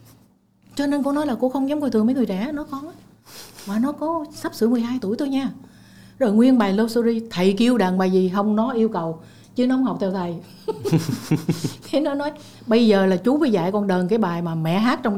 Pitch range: 195-260 Hz